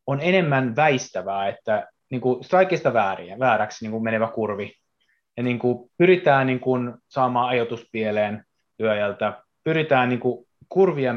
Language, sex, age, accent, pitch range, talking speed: Finnish, male, 30-49, native, 110-130 Hz, 115 wpm